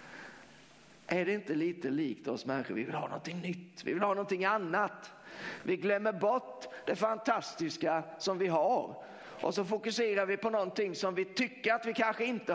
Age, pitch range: 50-69, 175-225 Hz